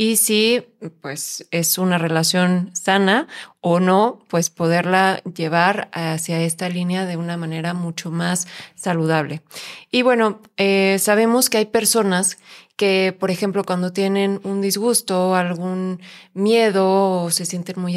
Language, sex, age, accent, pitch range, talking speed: Spanish, female, 20-39, Mexican, 175-210 Hz, 135 wpm